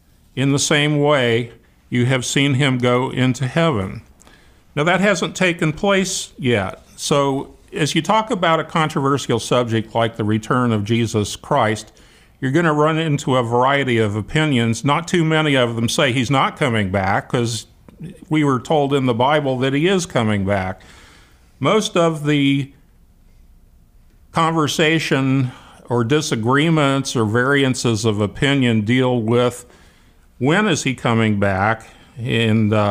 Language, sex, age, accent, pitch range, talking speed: English, male, 50-69, American, 115-150 Hz, 145 wpm